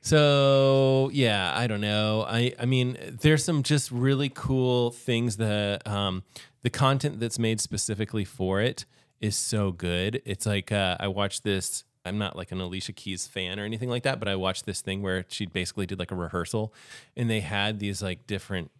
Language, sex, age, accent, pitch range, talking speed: English, male, 20-39, American, 95-120 Hz, 195 wpm